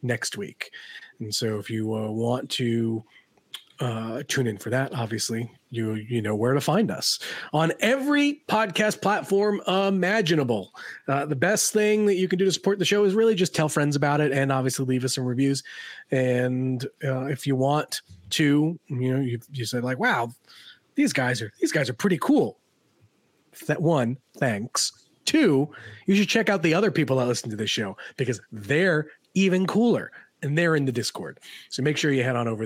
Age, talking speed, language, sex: 30-49, 195 wpm, English, male